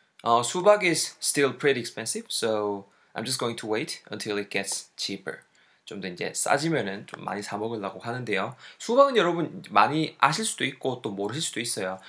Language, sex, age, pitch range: Korean, male, 20-39, 110-170 Hz